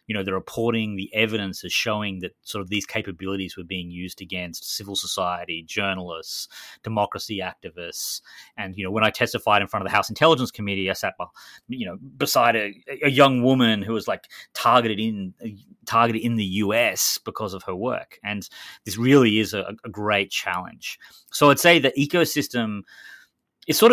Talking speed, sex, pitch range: 185 wpm, male, 95-115 Hz